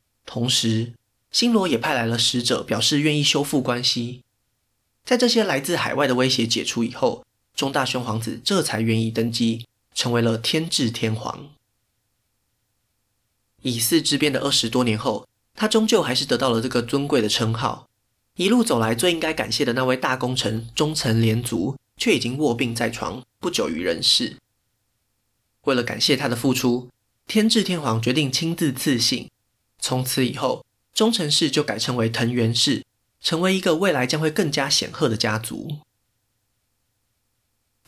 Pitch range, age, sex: 115-145 Hz, 20-39, male